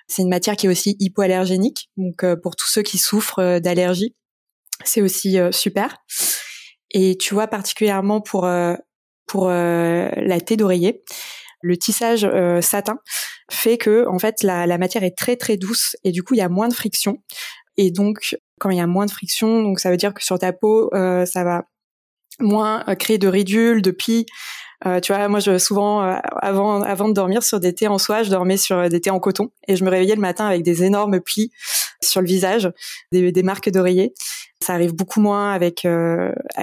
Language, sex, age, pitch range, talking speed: French, female, 20-39, 180-215 Hz, 210 wpm